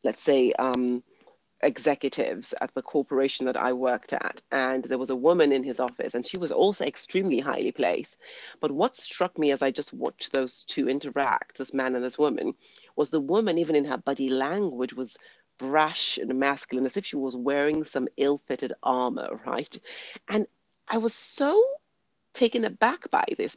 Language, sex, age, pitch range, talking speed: English, female, 40-59, 130-190 Hz, 185 wpm